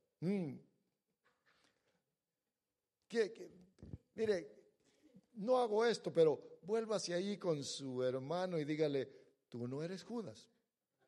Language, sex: English, male